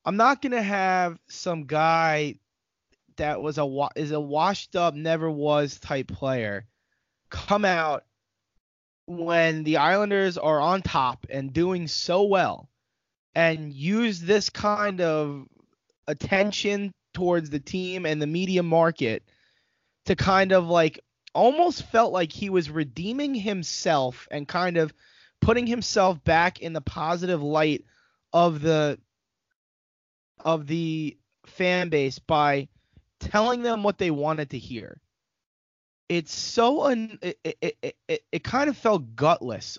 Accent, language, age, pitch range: American, English, 20-39, 145-190 Hz